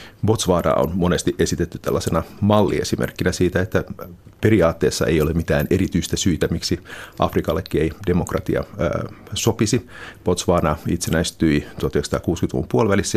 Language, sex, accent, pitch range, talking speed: Finnish, male, native, 85-105 Hz, 105 wpm